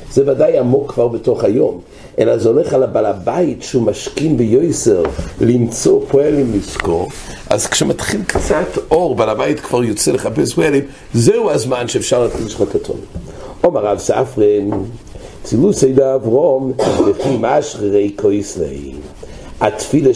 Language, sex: English, male